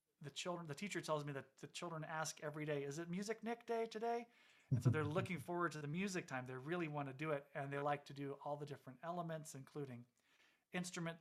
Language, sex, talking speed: English, male, 235 wpm